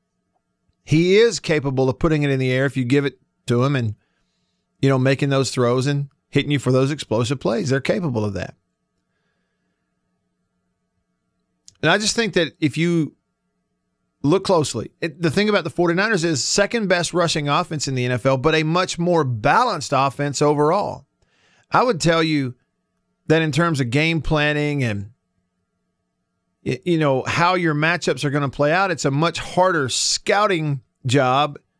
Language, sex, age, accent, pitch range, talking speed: English, male, 40-59, American, 130-175 Hz, 170 wpm